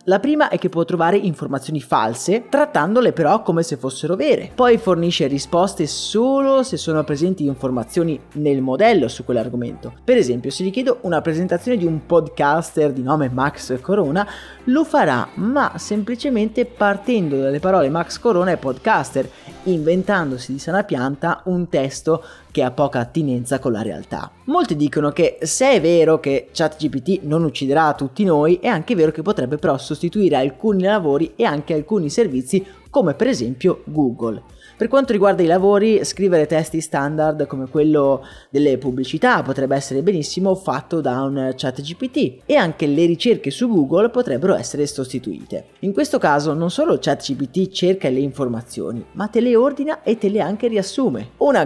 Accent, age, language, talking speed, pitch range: native, 30-49, Italian, 165 wpm, 140-200 Hz